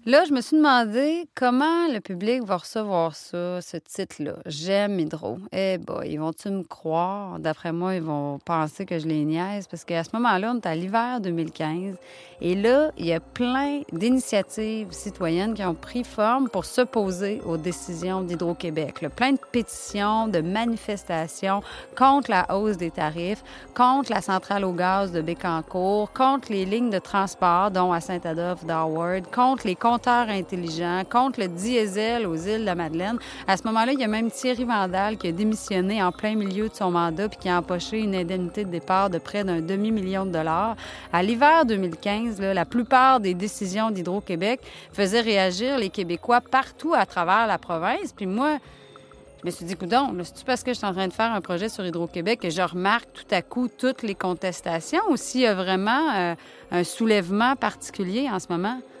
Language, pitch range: French, 175-235 Hz